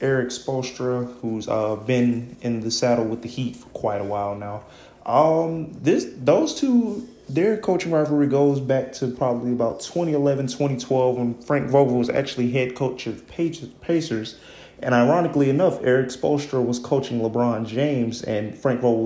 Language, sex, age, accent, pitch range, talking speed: English, male, 30-49, American, 115-135 Hz, 165 wpm